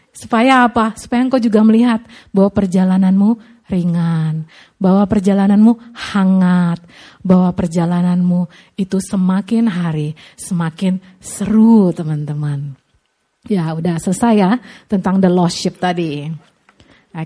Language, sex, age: Indonesian, female, 30-49